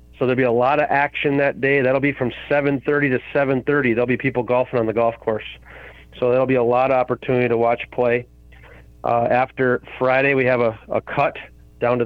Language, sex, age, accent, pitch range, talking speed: English, male, 30-49, American, 120-135 Hz, 215 wpm